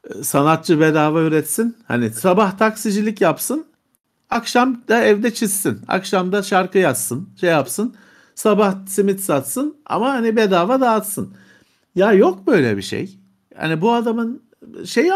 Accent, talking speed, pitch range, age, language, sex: native, 125 wpm, 155-230 Hz, 60-79, Turkish, male